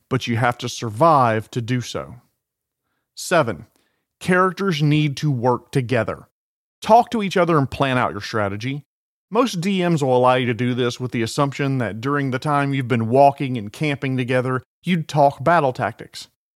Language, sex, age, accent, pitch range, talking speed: English, male, 40-59, American, 125-170 Hz, 175 wpm